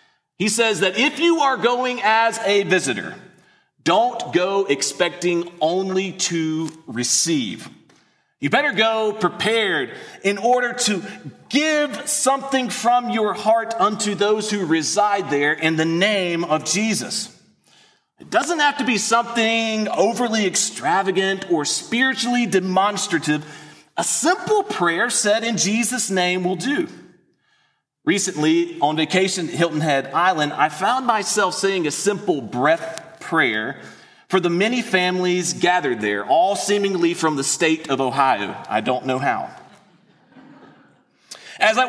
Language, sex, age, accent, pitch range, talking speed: English, male, 30-49, American, 170-240 Hz, 130 wpm